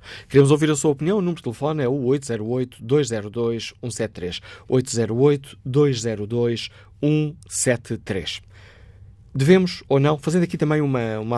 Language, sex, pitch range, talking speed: Portuguese, male, 115-140 Hz, 110 wpm